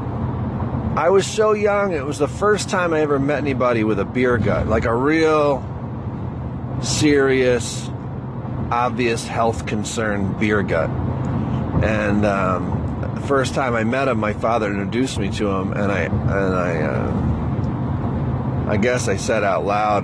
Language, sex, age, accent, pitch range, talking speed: English, male, 40-59, American, 110-125 Hz, 155 wpm